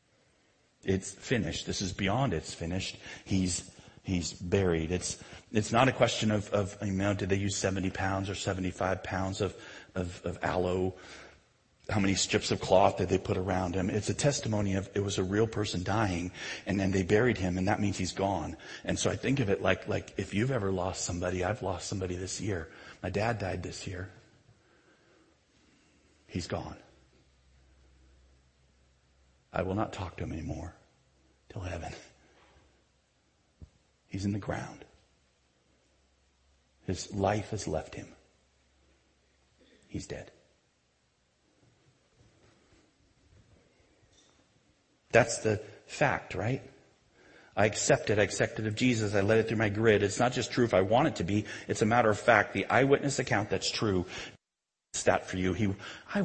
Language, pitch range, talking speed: English, 80-105 Hz, 160 wpm